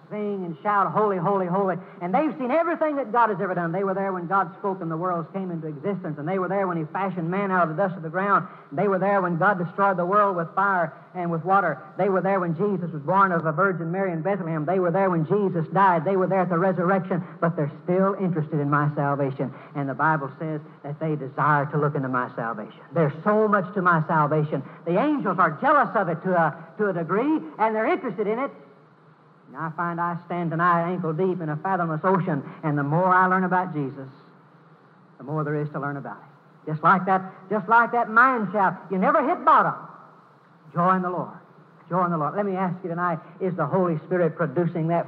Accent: American